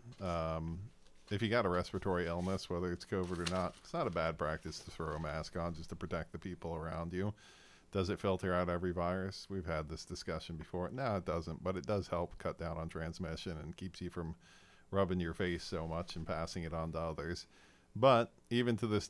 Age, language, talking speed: 40-59, English, 220 wpm